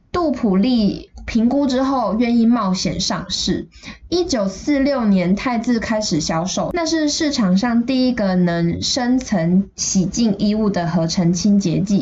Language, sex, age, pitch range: Chinese, female, 10-29, 190-260 Hz